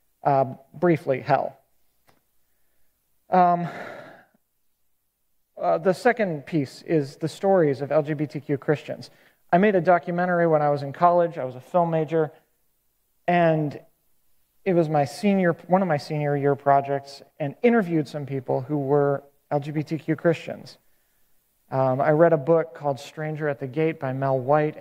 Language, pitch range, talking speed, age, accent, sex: English, 140-180 Hz, 145 wpm, 40-59, American, male